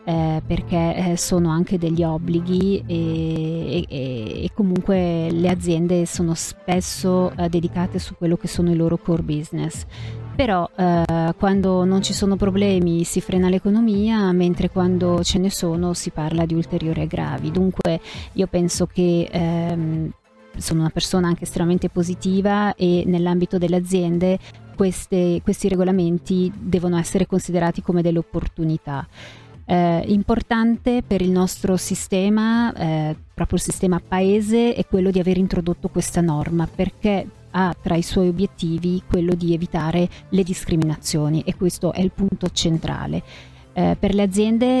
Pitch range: 170-190 Hz